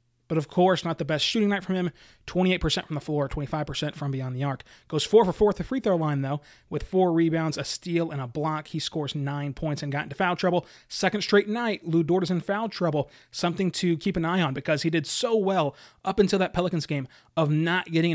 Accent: American